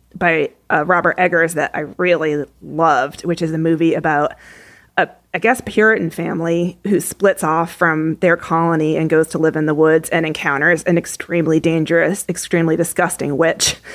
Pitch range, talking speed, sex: 160-200 Hz, 170 wpm, female